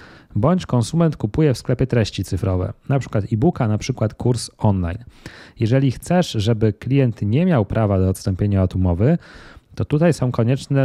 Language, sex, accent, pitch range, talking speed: Polish, male, native, 105-135 Hz, 160 wpm